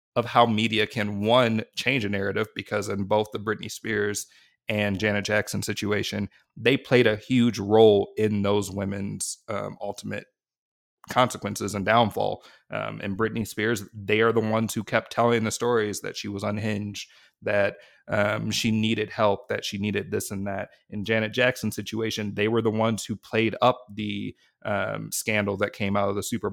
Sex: male